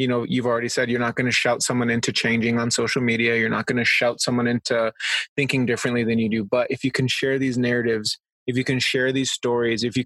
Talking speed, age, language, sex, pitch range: 255 wpm, 20-39, English, male, 115-130 Hz